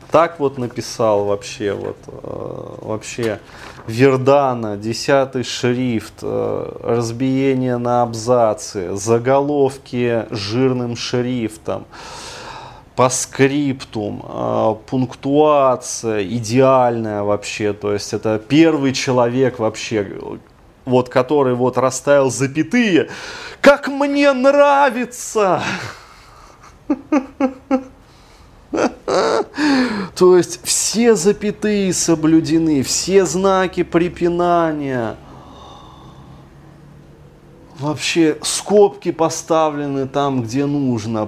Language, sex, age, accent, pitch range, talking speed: Russian, male, 20-39, native, 120-175 Hz, 75 wpm